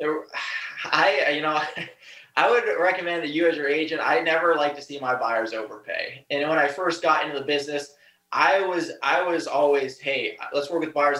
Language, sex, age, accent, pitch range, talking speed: English, male, 20-39, American, 140-170 Hz, 205 wpm